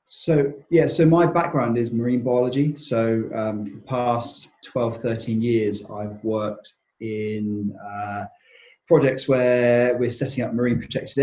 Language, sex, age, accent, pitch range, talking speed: English, male, 30-49, British, 105-125 Hz, 140 wpm